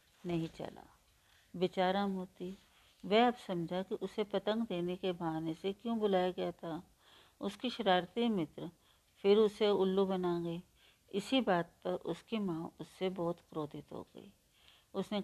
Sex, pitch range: female, 170-200 Hz